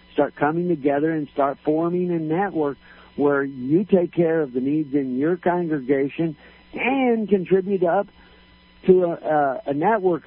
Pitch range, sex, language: 130-185 Hz, male, English